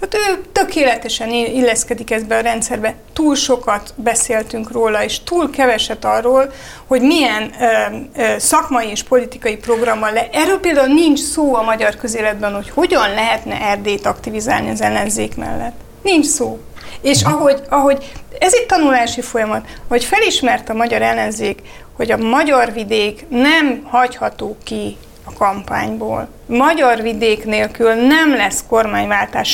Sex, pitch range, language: female, 225-275 Hz, Hungarian